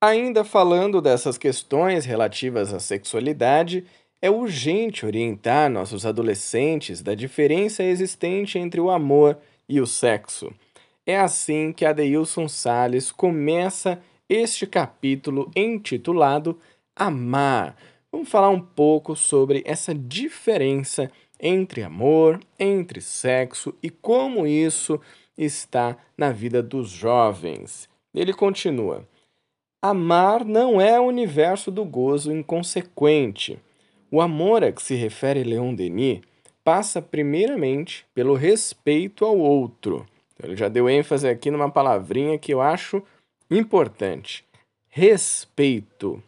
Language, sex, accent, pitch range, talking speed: Portuguese, male, Brazilian, 135-190 Hz, 115 wpm